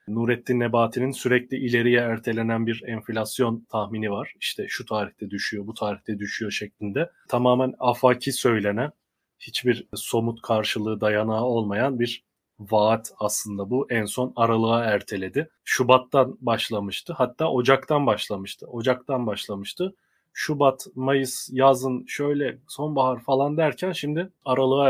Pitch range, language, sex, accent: 110-130 Hz, Turkish, male, native